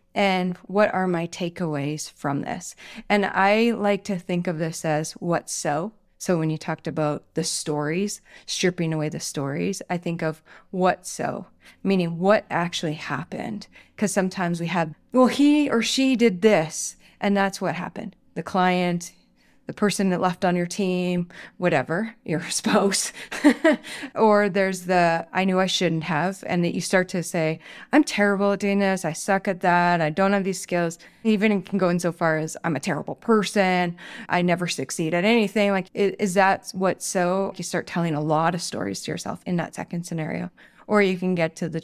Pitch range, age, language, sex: 170-210 Hz, 20-39, English, female